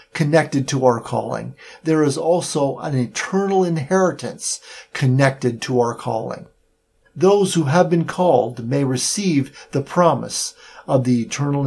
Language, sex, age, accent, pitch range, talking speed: English, male, 50-69, American, 130-175 Hz, 135 wpm